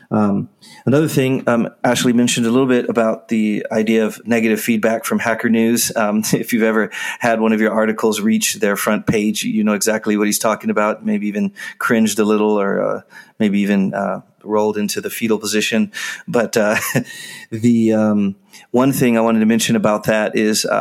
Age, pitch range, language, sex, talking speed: 30-49, 105-120 Hz, English, male, 190 wpm